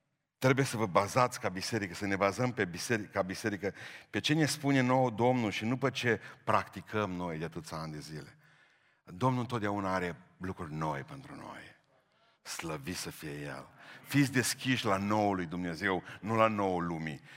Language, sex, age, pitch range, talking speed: Romanian, male, 60-79, 90-125 Hz, 175 wpm